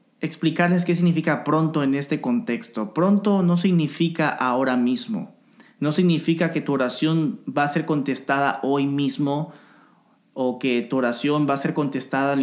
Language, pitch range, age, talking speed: Spanish, 140-195 Hz, 30-49, 155 wpm